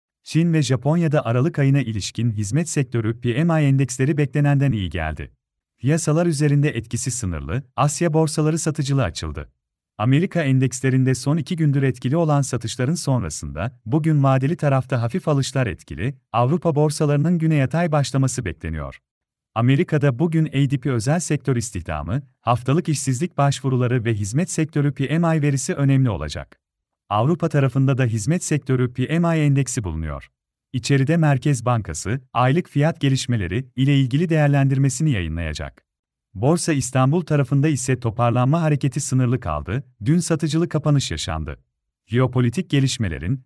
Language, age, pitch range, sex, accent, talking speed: Turkish, 40-59, 120-150 Hz, male, native, 125 wpm